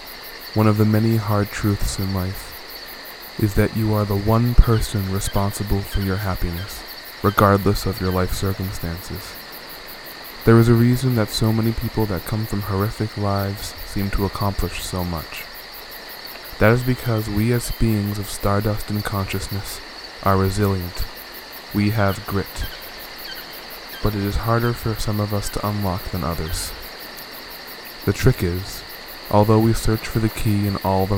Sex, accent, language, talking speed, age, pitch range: male, American, English, 155 wpm, 20-39, 95-105 Hz